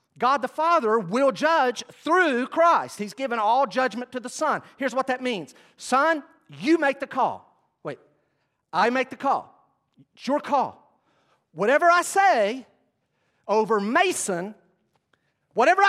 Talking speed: 140 wpm